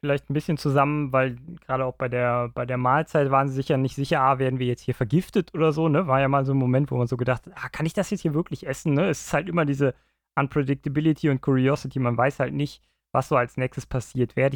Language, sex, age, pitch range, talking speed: German, male, 20-39, 120-140 Hz, 270 wpm